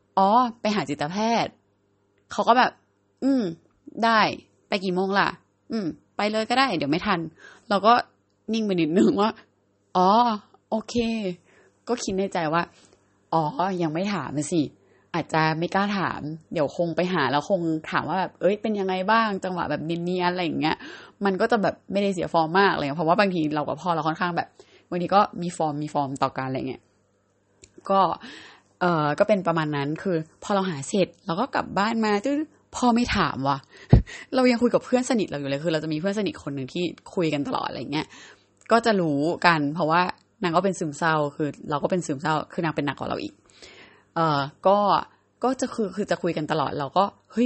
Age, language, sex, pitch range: 20-39, Thai, female, 155-210 Hz